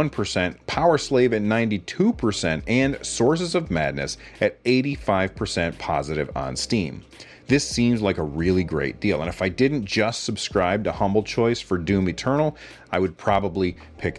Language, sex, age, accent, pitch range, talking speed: English, male, 30-49, American, 90-120 Hz, 150 wpm